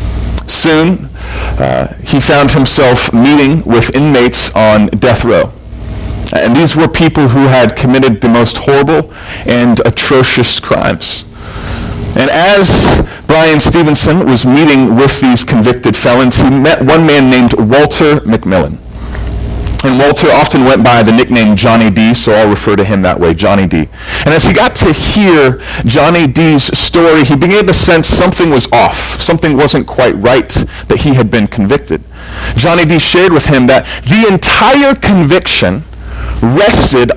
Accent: American